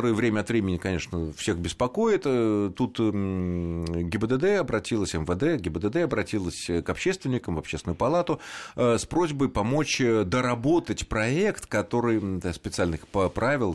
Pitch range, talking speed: 90-135 Hz, 115 wpm